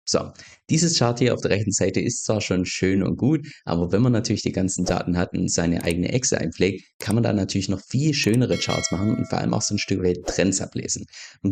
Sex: male